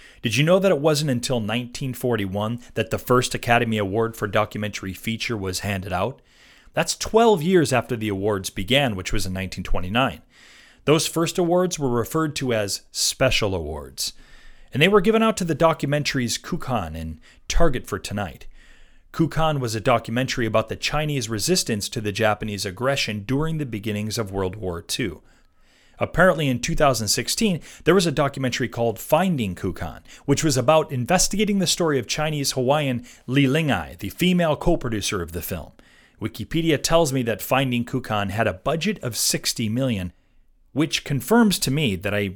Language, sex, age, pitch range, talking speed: English, male, 30-49, 105-150 Hz, 165 wpm